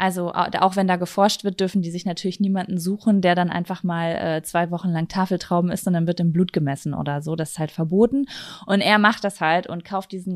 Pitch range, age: 180-220 Hz, 20-39